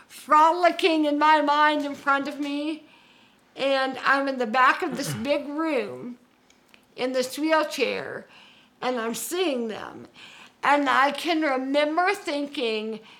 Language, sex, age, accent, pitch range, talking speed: English, female, 50-69, American, 255-305 Hz, 130 wpm